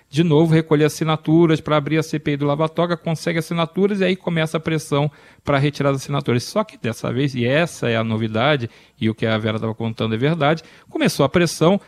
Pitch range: 125-175 Hz